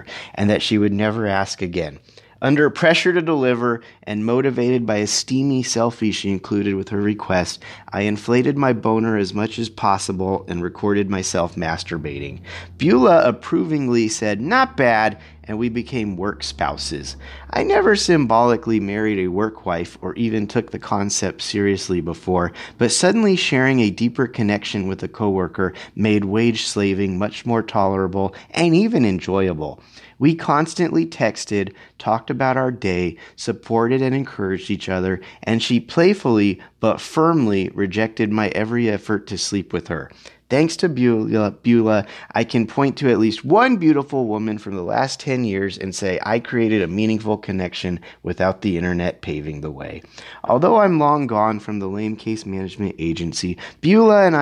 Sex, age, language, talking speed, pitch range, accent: male, 30-49, English, 160 wpm, 95-125 Hz, American